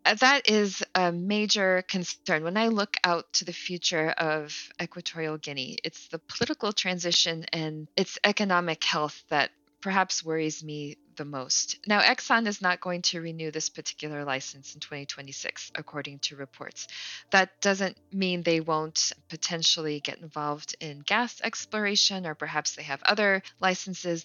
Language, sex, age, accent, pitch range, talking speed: English, female, 20-39, American, 155-190 Hz, 150 wpm